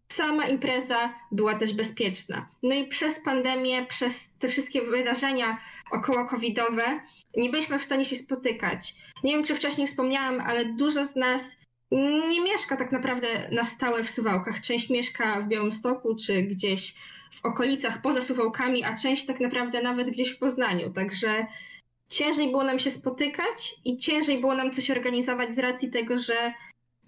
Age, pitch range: 20-39, 230-270 Hz